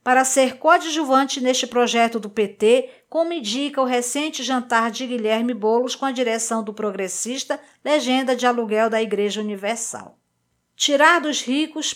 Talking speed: 145 wpm